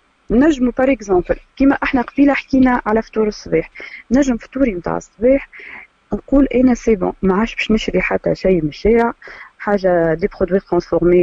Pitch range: 180-250 Hz